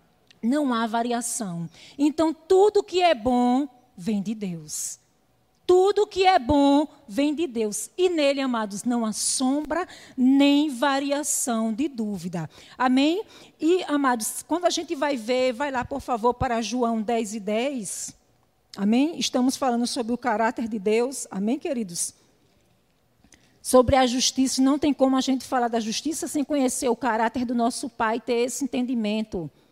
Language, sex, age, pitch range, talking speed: Portuguese, female, 40-59, 235-295 Hz, 155 wpm